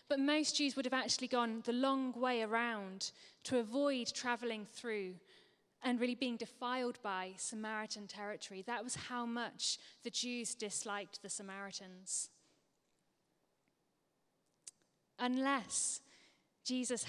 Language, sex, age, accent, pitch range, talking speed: English, female, 10-29, British, 210-250 Hz, 115 wpm